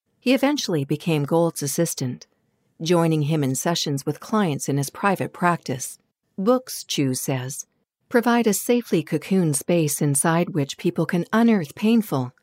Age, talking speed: 50-69, 140 wpm